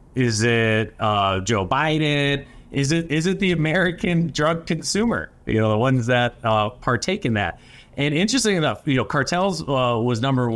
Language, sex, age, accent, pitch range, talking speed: English, male, 30-49, American, 110-135 Hz, 175 wpm